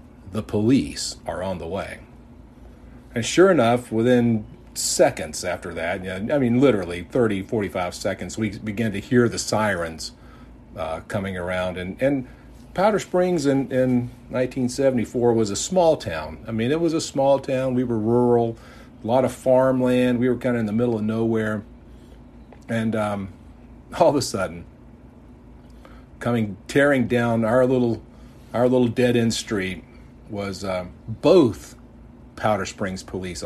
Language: English